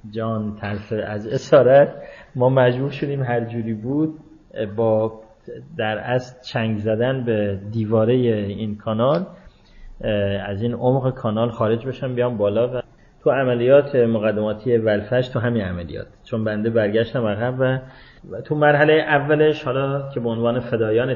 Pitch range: 105-130 Hz